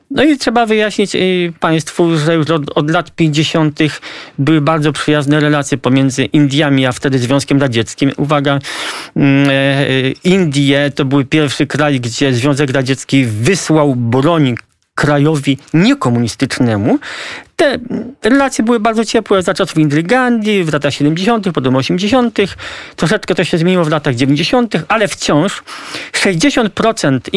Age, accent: 40-59, native